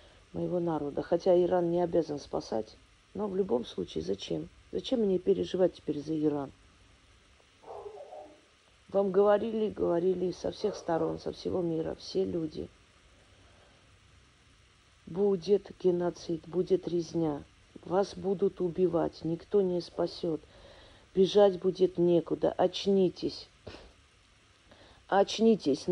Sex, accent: female, native